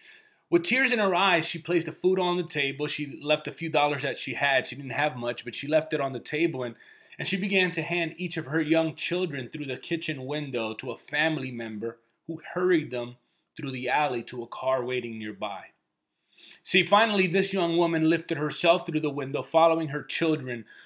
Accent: American